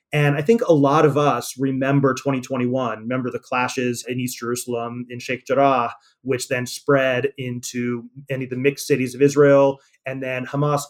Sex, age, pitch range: male, 30-49, 125-145 Hz